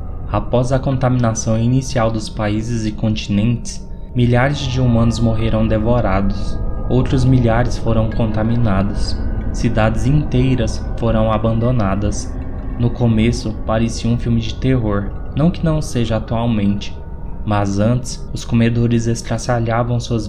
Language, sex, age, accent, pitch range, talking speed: Portuguese, male, 20-39, Brazilian, 105-120 Hz, 115 wpm